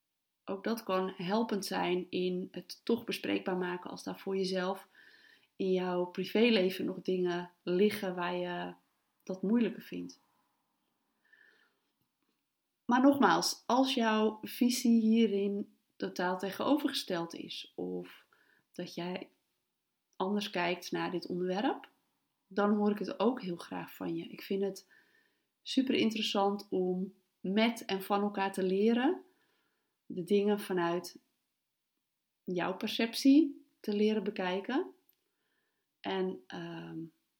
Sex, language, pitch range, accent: female, Dutch, 185-245 Hz, Dutch